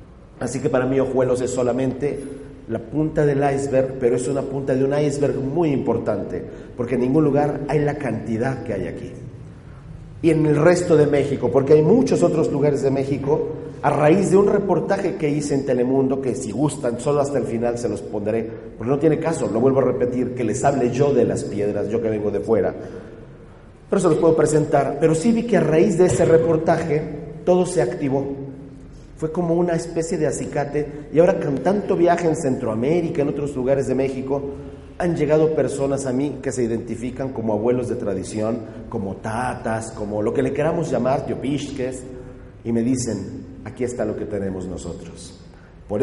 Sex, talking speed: male, 195 wpm